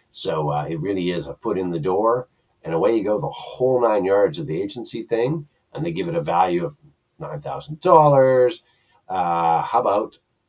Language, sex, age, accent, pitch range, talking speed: English, male, 50-69, American, 95-155 Hz, 185 wpm